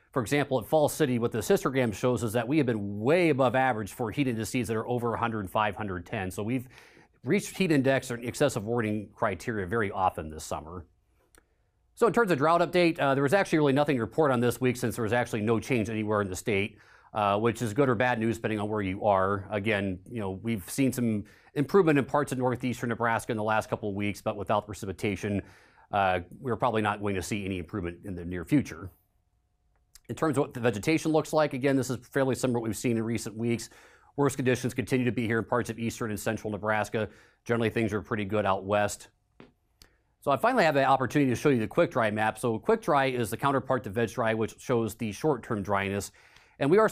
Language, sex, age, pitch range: English, male, 30-49, 105-130 Hz